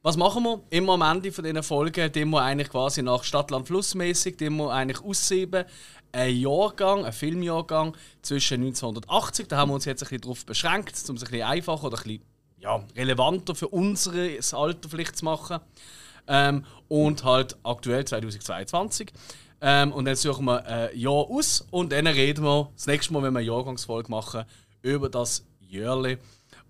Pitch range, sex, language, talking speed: 125-155 Hz, male, German, 170 wpm